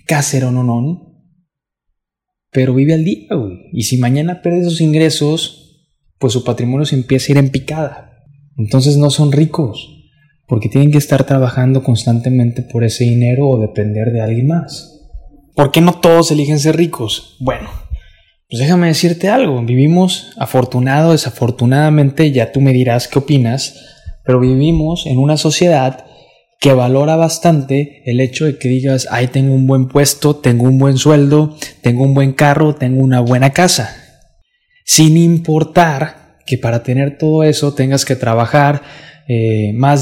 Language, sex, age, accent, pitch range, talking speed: Spanish, male, 20-39, Mexican, 130-155 Hz, 155 wpm